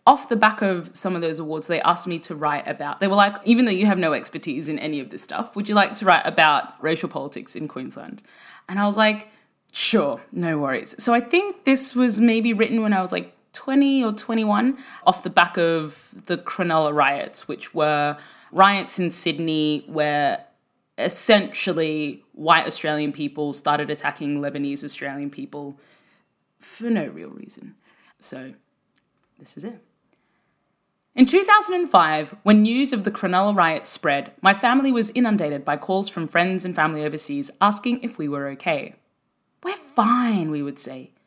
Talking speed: 175 wpm